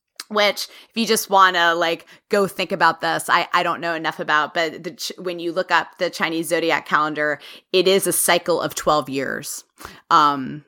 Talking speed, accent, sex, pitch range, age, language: 195 wpm, American, female, 170-255 Hz, 30-49, English